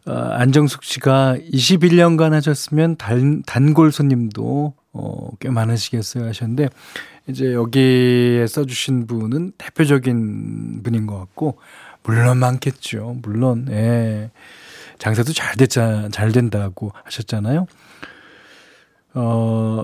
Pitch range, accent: 115-150 Hz, native